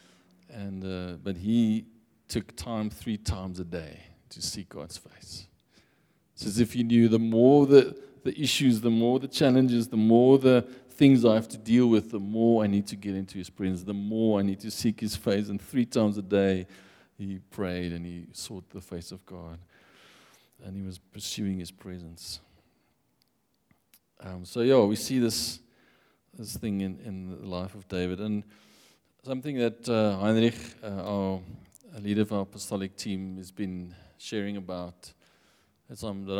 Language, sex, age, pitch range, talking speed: English, male, 40-59, 95-115 Hz, 170 wpm